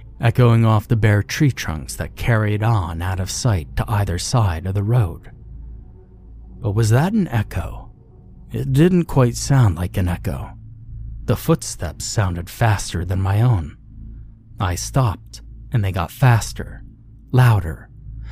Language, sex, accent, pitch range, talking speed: English, male, American, 95-115 Hz, 145 wpm